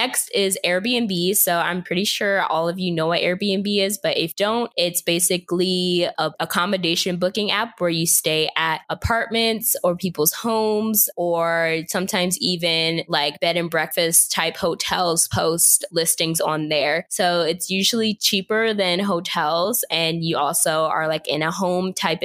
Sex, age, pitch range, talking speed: female, 20-39, 165-195 Hz, 160 wpm